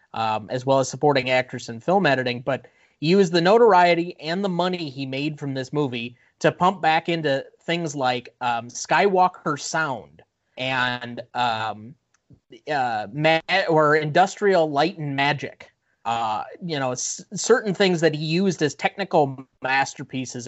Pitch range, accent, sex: 130-170 Hz, American, male